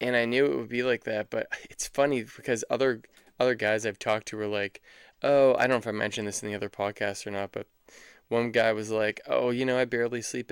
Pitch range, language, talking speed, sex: 105-120 Hz, English, 255 wpm, male